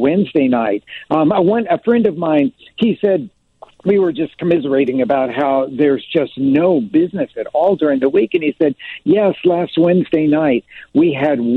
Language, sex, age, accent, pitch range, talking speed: English, male, 60-79, American, 135-195 Hz, 180 wpm